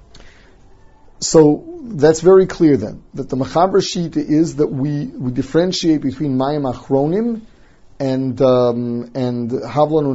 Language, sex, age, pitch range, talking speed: English, male, 30-49, 120-145 Hz, 120 wpm